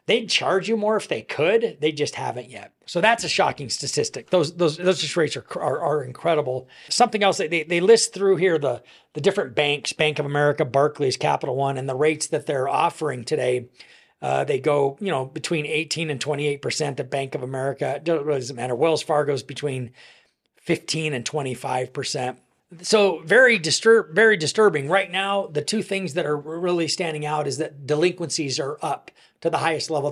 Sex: male